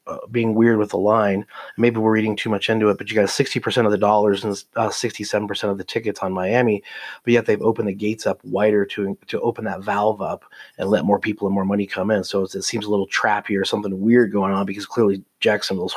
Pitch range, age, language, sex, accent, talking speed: 95-110 Hz, 30-49, English, male, American, 255 wpm